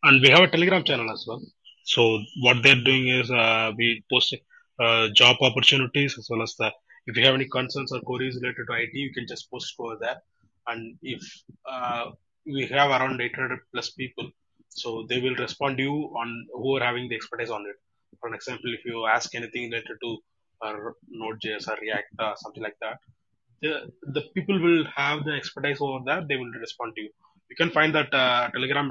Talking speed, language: 205 wpm, Tamil